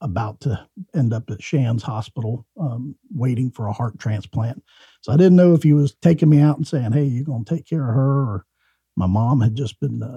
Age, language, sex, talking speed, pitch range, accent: 50-69, English, male, 235 wpm, 115-165 Hz, American